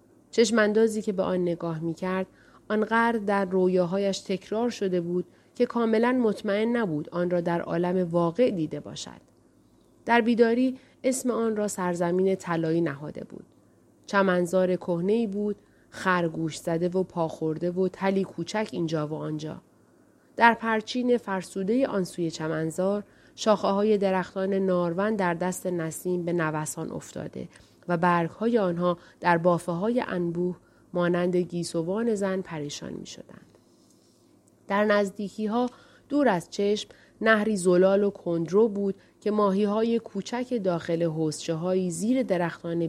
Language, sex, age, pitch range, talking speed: Persian, female, 30-49, 170-210 Hz, 130 wpm